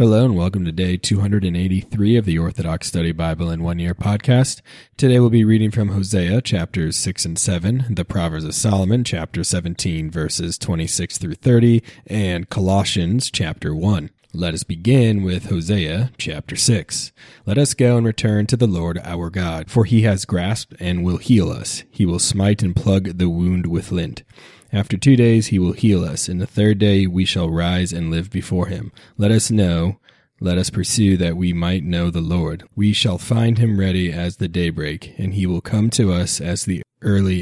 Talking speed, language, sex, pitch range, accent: 195 wpm, English, male, 85-110 Hz, American